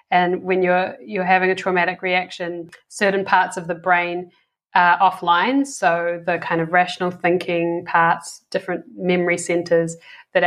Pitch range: 175-190 Hz